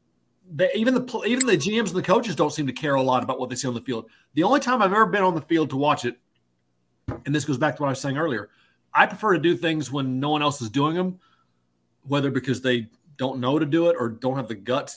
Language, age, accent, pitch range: English, 40-59, American, 120-155 Hz